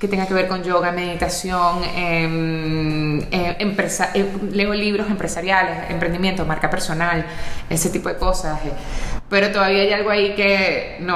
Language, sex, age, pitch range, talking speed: Spanish, female, 20-39, 160-200 Hz, 155 wpm